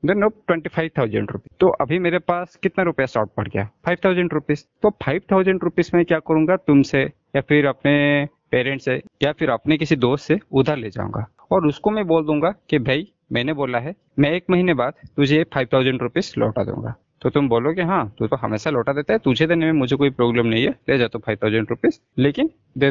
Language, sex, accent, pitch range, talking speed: Hindi, male, native, 120-170 Hz, 215 wpm